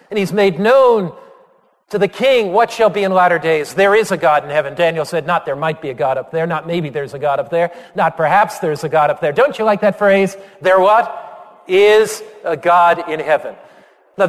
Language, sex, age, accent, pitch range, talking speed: English, male, 50-69, American, 160-205 Hz, 235 wpm